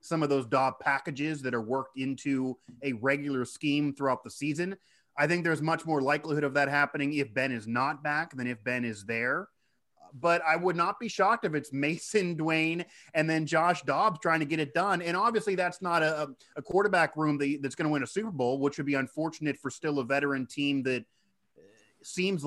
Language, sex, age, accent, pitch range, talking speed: English, male, 30-49, American, 130-165 Hz, 210 wpm